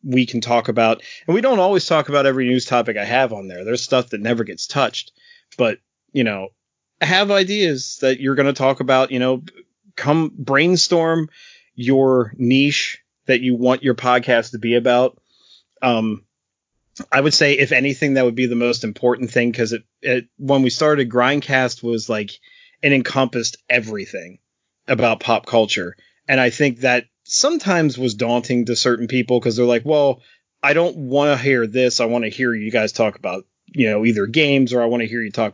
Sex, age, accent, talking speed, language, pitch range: male, 30-49, American, 195 wpm, English, 115-140 Hz